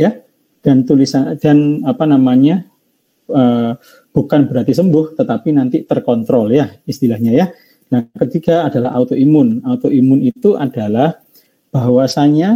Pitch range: 125-160 Hz